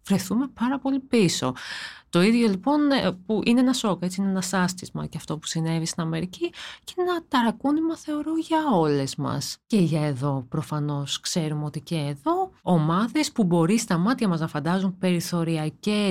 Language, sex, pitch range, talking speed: Greek, female, 165-240 Hz, 170 wpm